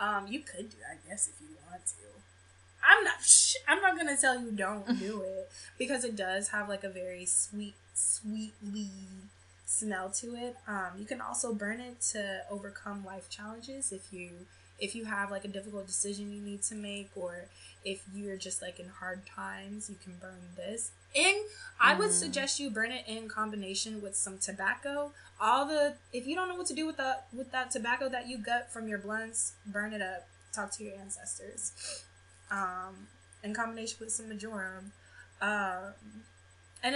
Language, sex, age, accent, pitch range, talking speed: English, female, 10-29, American, 185-225 Hz, 190 wpm